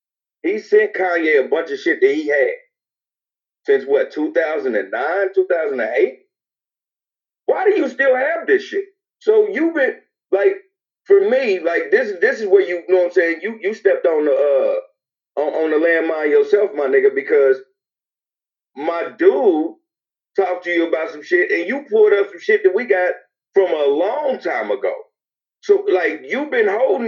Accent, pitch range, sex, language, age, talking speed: American, 255-425 Hz, male, English, 40-59, 175 wpm